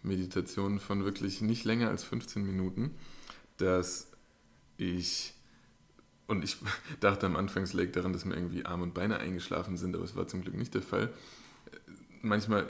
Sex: male